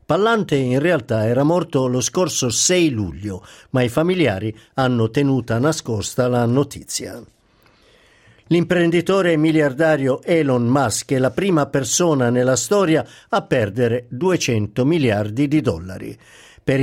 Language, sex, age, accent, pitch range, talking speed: Italian, male, 50-69, native, 120-155 Hz, 120 wpm